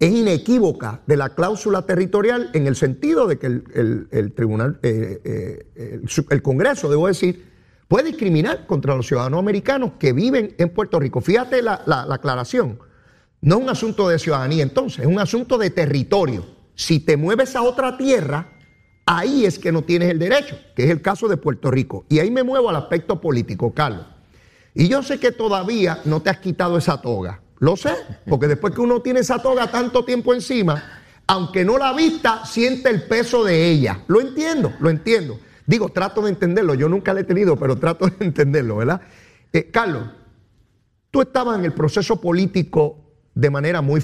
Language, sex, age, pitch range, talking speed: Spanish, male, 40-59, 135-210 Hz, 190 wpm